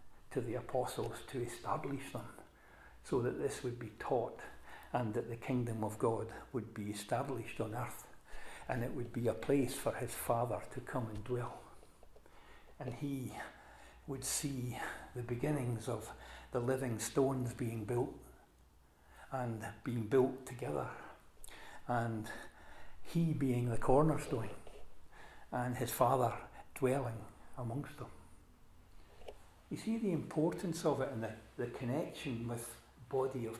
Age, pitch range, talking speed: 60-79, 115-140 Hz, 135 wpm